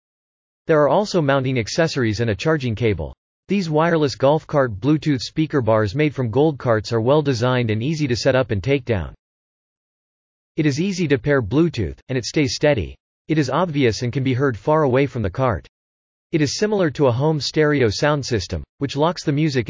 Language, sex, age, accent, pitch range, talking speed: English, male, 40-59, American, 110-150 Hz, 200 wpm